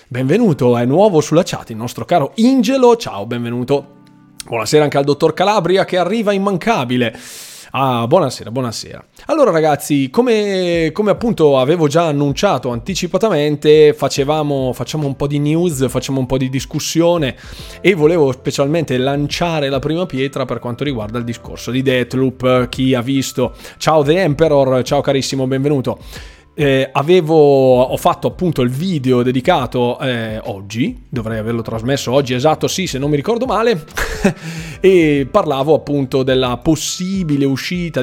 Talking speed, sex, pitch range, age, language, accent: 145 wpm, male, 120-155 Hz, 20-39, Italian, native